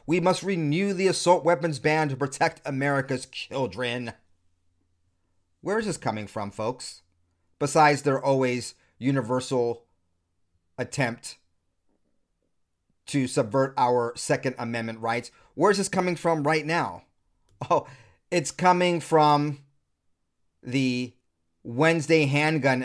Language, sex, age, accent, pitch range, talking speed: English, male, 30-49, American, 100-140 Hz, 115 wpm